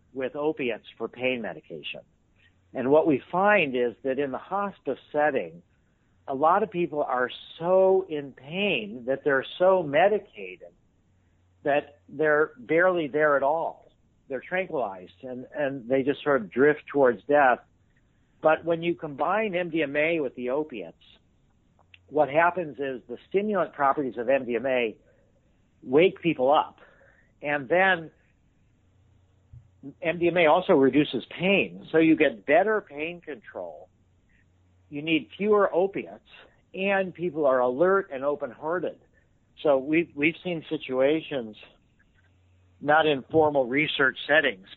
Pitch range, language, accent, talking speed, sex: 115-155 Hz, English, American, 125 wpm, male